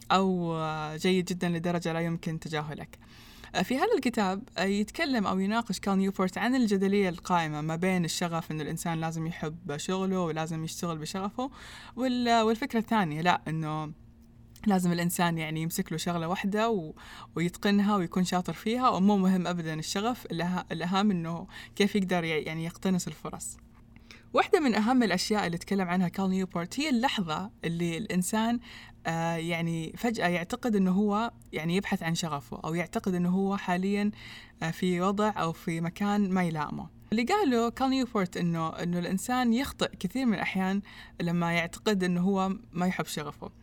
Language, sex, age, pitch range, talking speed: Persian, female, 20-39, 170-215 Hz, 150 wpm